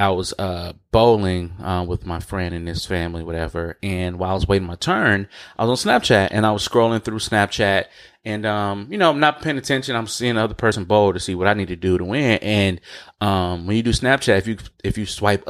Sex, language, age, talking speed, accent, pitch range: male, English, 30-49, 245 wpm, American, 90-115 Hz